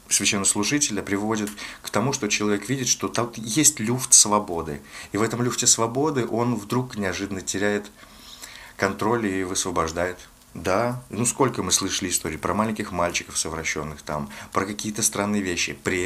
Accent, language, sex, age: native, Russian, male, 30-49